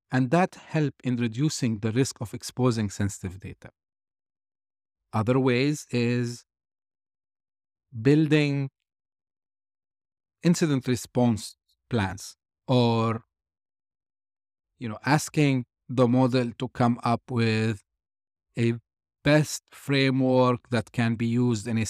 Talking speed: 100 wpm